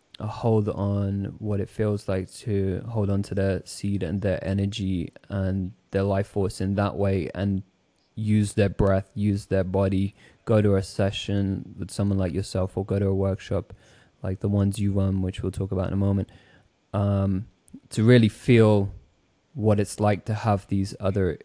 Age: 20-39